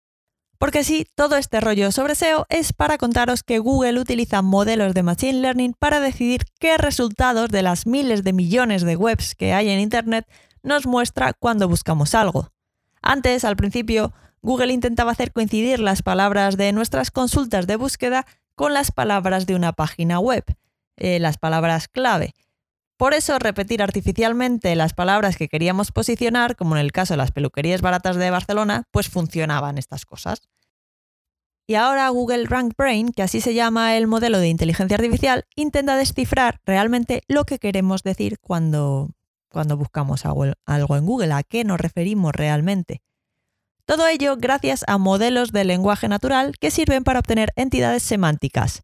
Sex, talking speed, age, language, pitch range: female, 160 wpm, 20-39, Spanish, 175-250 Hz